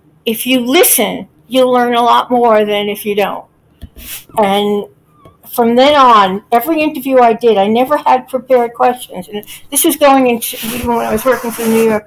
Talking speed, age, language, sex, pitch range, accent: 195 wpm, 60-79, English, female, 220-265 Hz, American